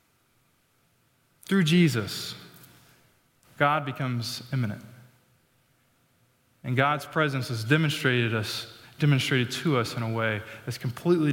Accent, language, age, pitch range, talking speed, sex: American, English, 20-39, 125-170 Hz, 95 wpm, male